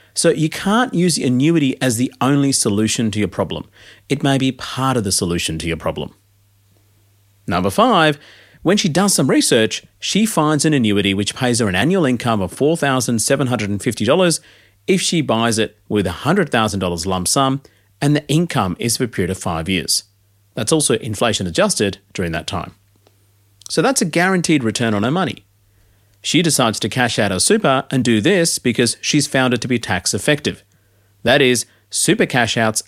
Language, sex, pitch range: English, male, 100-140 Hz